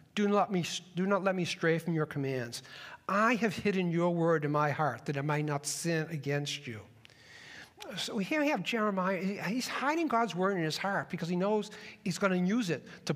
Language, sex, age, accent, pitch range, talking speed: English, male, 60-79, American, 150-200 Hz, 205 wpm